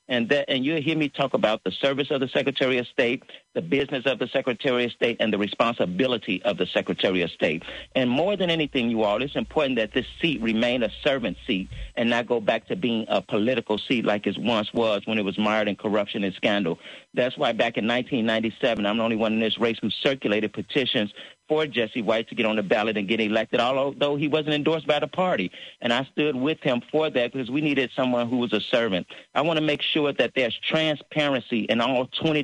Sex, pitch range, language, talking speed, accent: male, 110-140 Hz, English, 245 wpm, American